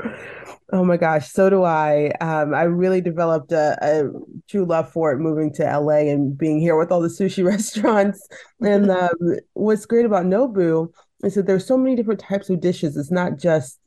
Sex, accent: female, American